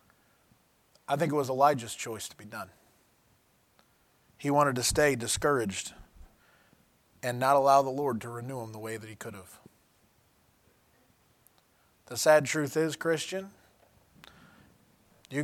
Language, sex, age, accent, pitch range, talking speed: English, male, 20-39, American, 125-155 Hz, 130 wpm